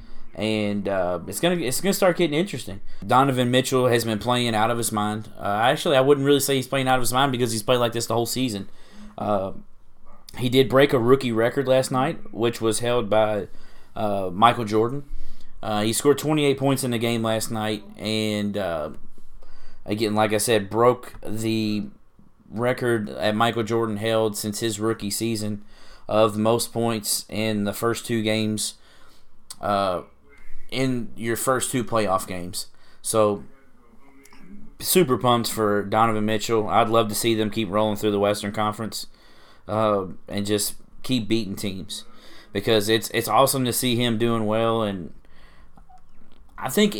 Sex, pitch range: male, 105-125 Hz